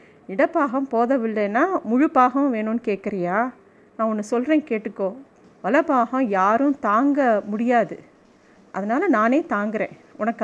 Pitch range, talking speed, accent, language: 210-265 Hz, 100 wpm, native, Tamil